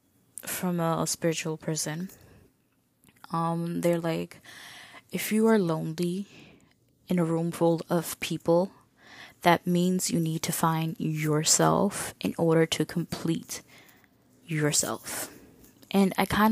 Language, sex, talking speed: English, female, 120 wpm